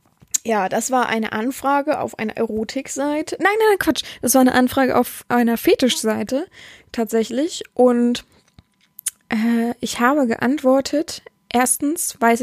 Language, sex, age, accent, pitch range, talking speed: German, female, 20-39, German, 215-250 Hz, 130 wpm